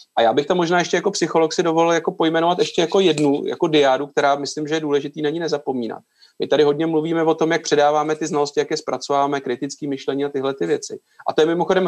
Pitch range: 135-155 Hz